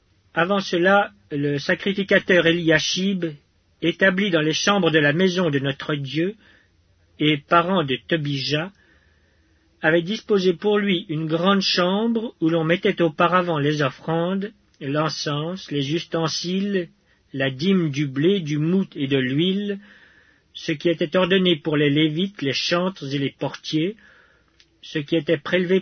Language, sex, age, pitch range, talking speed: English, male, 40-59, 145-180 Hz, 140 wpm